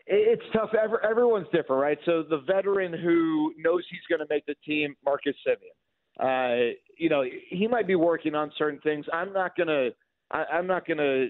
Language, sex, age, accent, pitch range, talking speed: English, male, 40-59, American, 145-185 Hz, 180 wpm